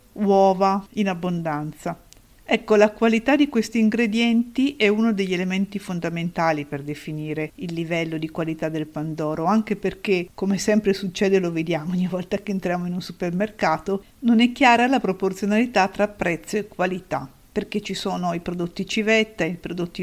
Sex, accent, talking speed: female, native, 160 wpm